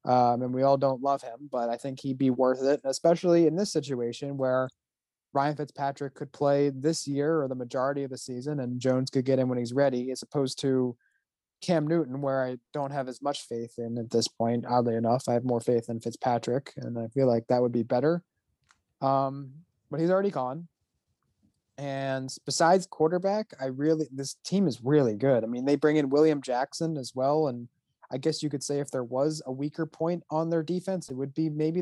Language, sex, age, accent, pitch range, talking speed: English, male, 20-39, American, 125-150 Hz, 215 wpm